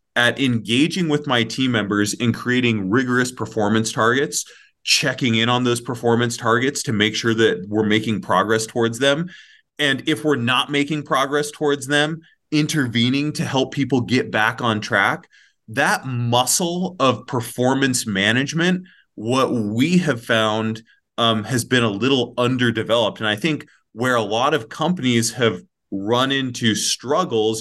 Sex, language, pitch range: male, English, 110-135 Hz